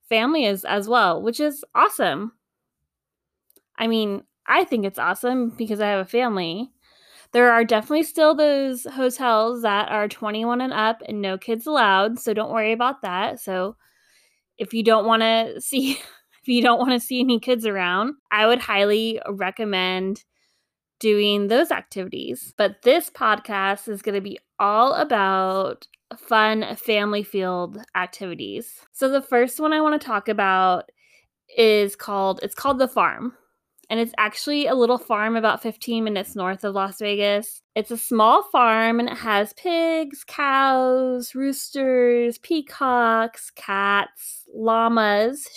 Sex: female